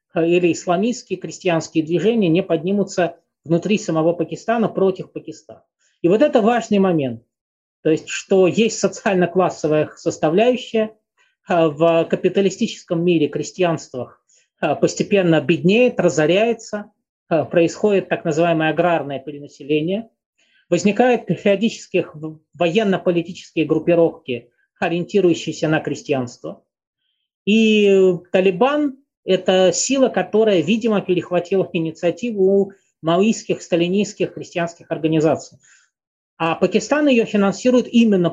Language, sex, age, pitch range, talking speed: Russian, male, 20-39, 165-210 Hz, 90 wpm